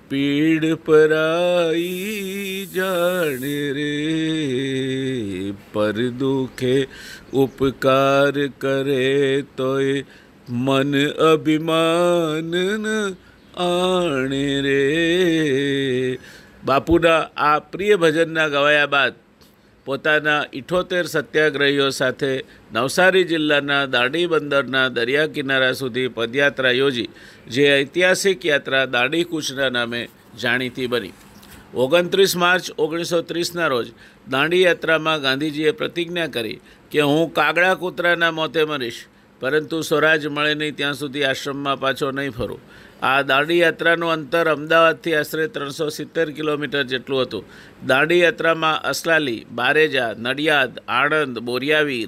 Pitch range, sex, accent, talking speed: 135-165 Hz, male, native, 95 wpm